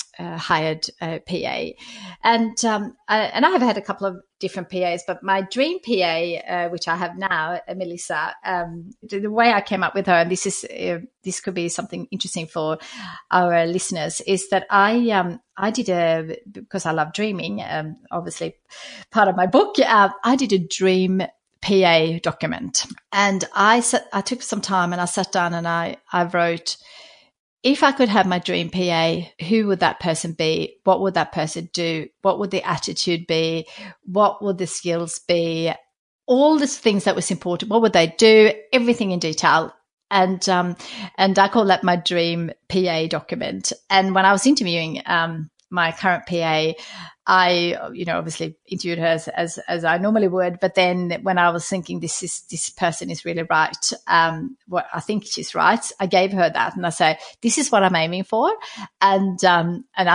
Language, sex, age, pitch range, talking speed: English, female, 40-59, 170-205 Hz, 195 wpm